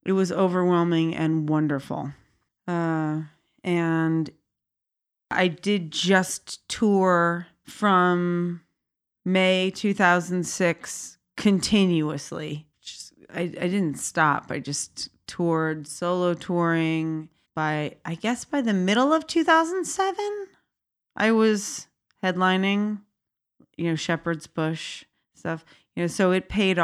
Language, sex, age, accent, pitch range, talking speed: English, female, 30-49, American, 160-185 Hz, 105 wpm